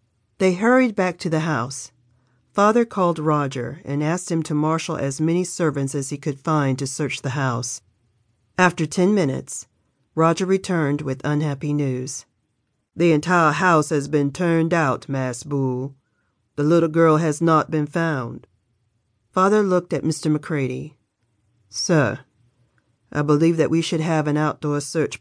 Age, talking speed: 40-59, 150 wpm